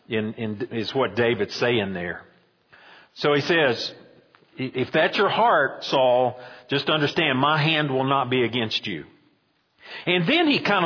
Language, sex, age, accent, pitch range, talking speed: English, male, 50-69, American, 120-180 Hz, 160 wpm